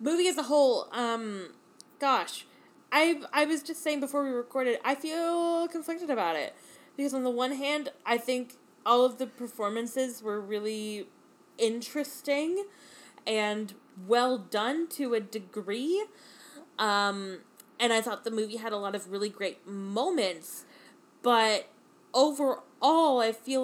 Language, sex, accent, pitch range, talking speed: English, female, American, 205-265 Hz, 140 wpm